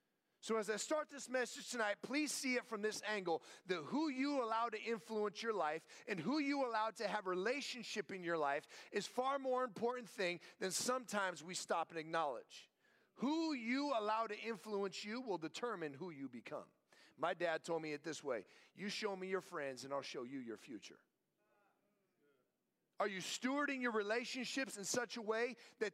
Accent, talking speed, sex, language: American, 185 wpm, male, English